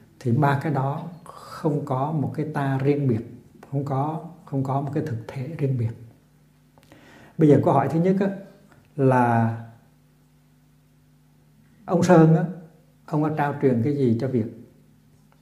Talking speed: 150 wpm